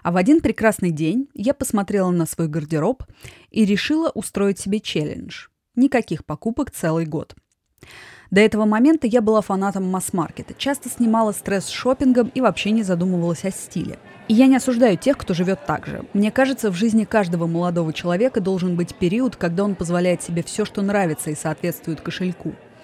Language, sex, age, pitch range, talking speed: Russian, female, 20-39, 175-235 Hz, 175 wpm